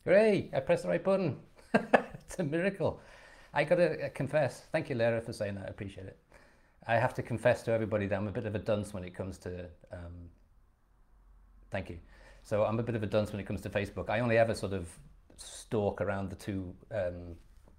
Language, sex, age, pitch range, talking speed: English, male, 30-49, 90-115 Hz, 215 wpm